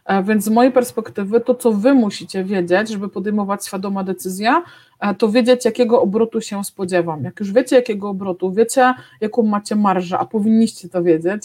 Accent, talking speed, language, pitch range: native, 170 wpm, Polish, 190-230 Hz